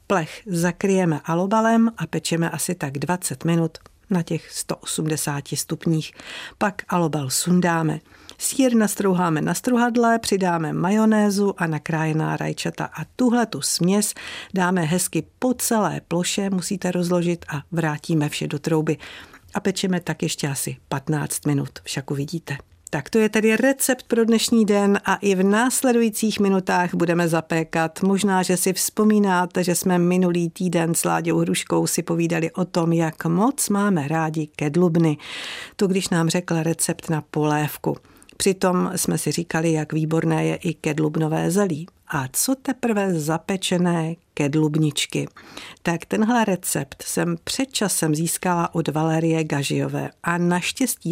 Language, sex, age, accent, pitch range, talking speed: Czech, female, 50-69, native, 160-195 Hz, 140 wpm